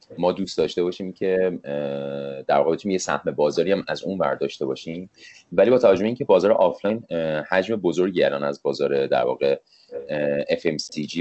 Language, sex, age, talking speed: Persian, male, 30-49, 150 wpm